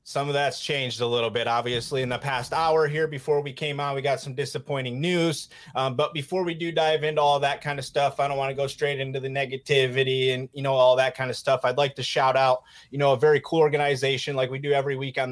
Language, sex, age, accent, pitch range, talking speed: English, male, 30-49, American, 125-150 Hz, 265 wpm